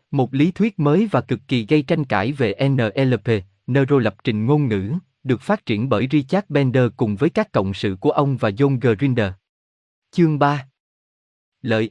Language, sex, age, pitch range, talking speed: Vietnamese, male, 20-39, 110-155 Hz, 180 wpm